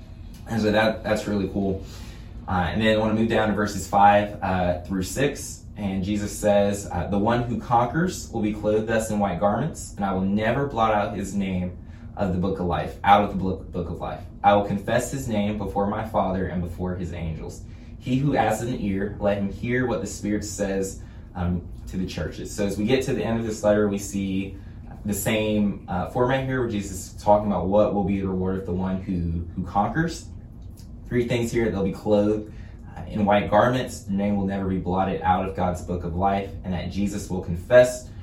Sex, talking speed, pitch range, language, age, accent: male, 220 wpm, 90-105 Hz, English, 20-39, American